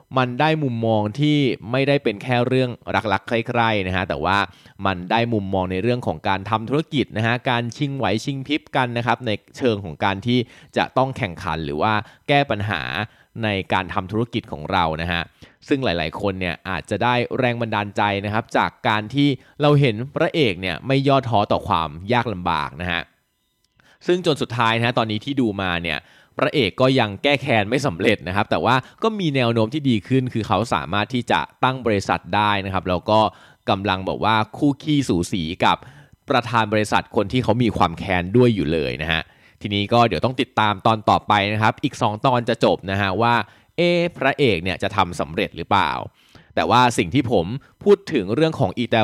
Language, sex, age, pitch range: Thai, male, 20-39, 100-130 Hz